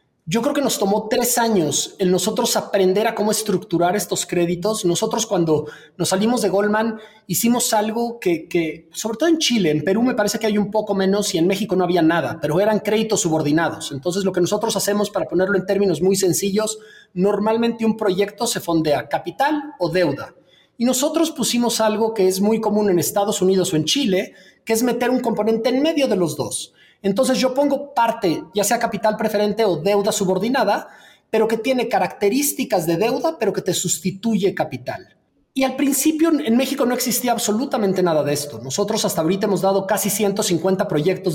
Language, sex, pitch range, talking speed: Spanish, male, 180-225 Hz, 195 wpm